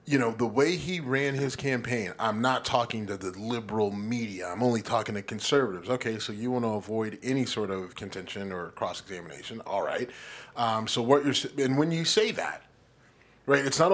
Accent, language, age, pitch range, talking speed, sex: American, English, 30-49, 110-135 Hz, 200 wpm, male